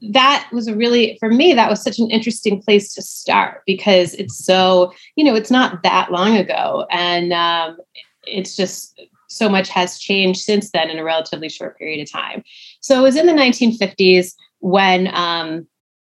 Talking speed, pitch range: 185 wpm, 175-210 Hz